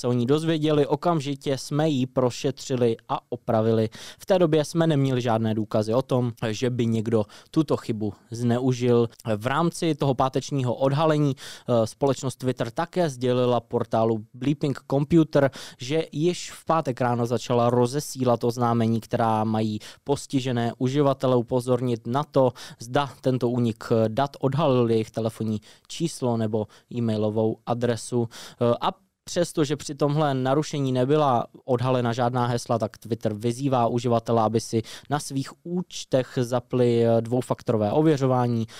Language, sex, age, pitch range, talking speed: Czech, male, 20-39, 115-140 Hz, 130 wpm